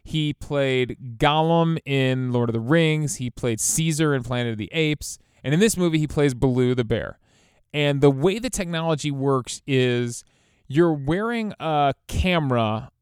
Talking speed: 165 wpm